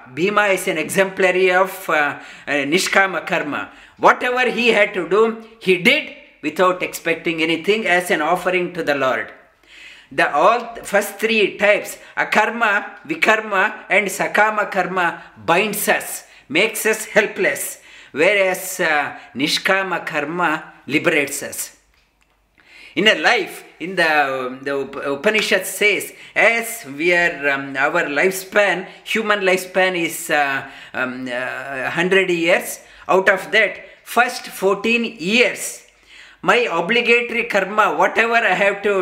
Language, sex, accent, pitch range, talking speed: English, male, Indian, 175-215 Hz, 125 wpm